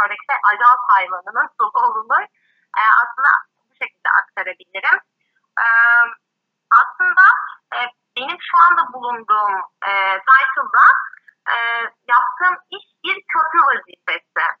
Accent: native